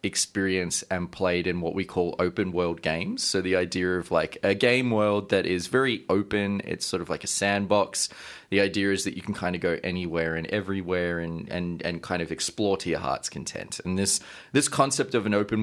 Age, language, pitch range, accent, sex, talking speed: 20-39, English, 85-110 Hz, Australian, male, 220 wpm